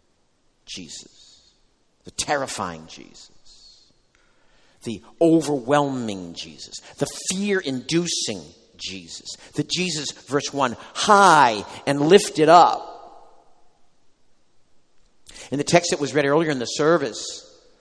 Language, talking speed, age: English, 95 wpm, 50-69